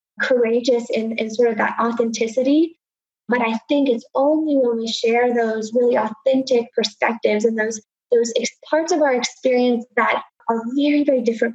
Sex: female